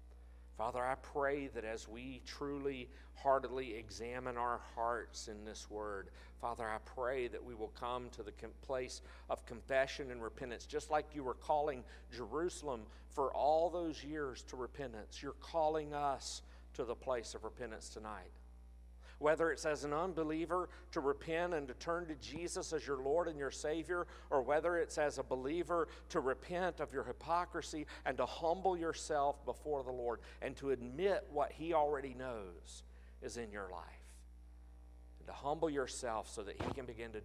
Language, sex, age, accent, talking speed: English, male, 50-69, American, 170 wpm